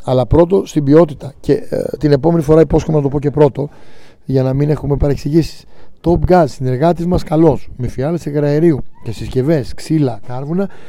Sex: male